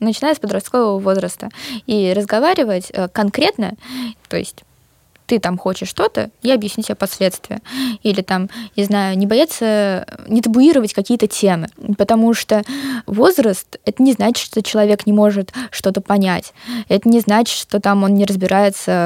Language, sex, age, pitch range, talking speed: Russian, female, 20-39, 185-230 Hz, 150 wpm